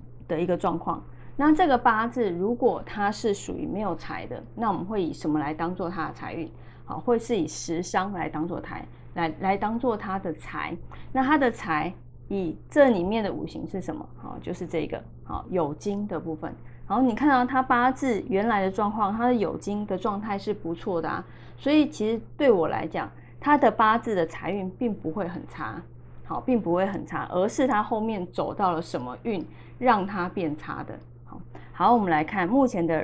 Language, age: Chinese, 30-49